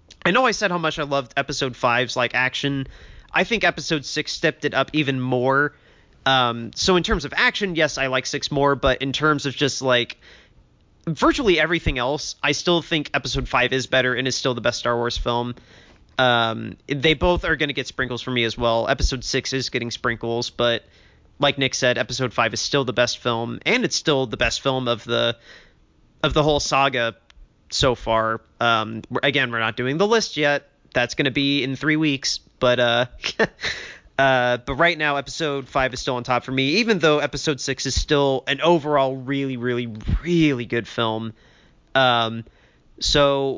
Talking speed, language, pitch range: 195 wpm, English, 120-150 Hz